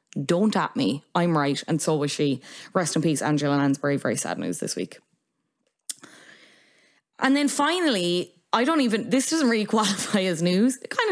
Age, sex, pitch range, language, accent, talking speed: 20-39, female, 160-220 Hz, English, Irish, 185 wpm